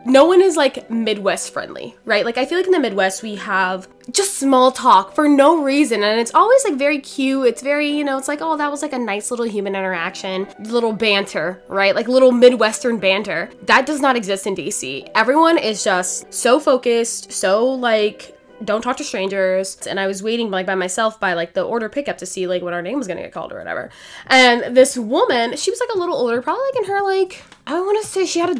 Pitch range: 195-280 Hz